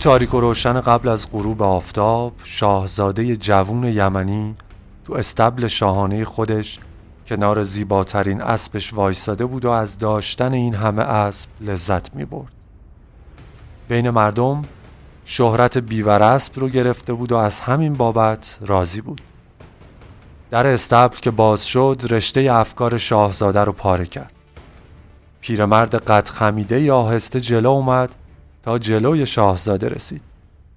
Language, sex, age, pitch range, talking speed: Persian, male, 30-49, 100-125 Hz, 120 wpm